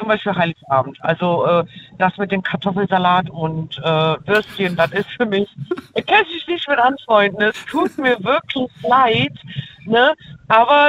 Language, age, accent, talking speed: German, 50-69, German, 165 wpm